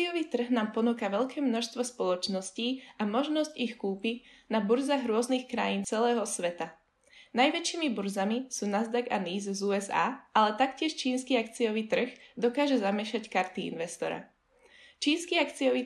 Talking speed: 140 wpm